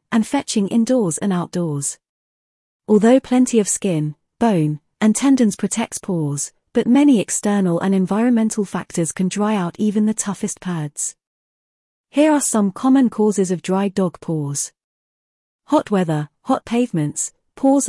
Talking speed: 140 wpm